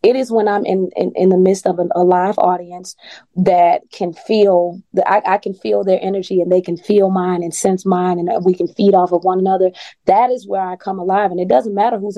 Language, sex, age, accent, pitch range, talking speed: English, female, 20-39, American, 180-210 Hz, 250 wpm